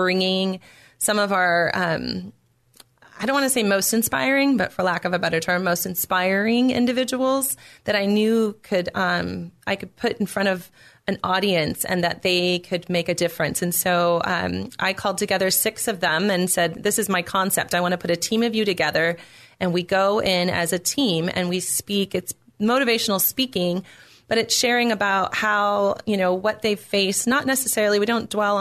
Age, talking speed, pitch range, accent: 30-49, 195 wpm, 180-210 Hz, American